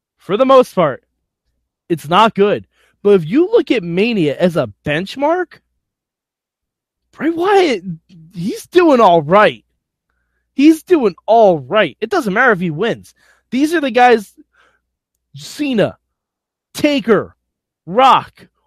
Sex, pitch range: male, 170-255 Hz